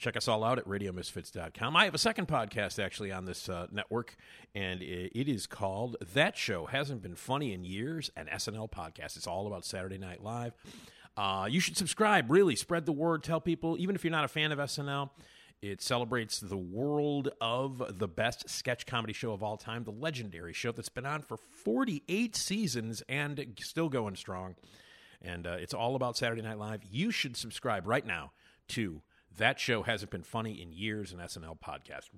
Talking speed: 195 wpm